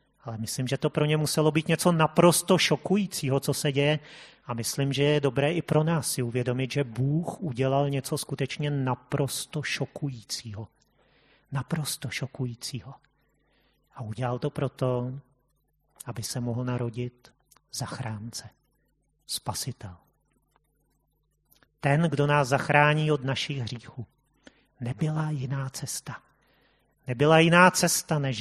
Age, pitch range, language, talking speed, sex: 40-59, 120-145 Hz, Czech, 120 wpm, male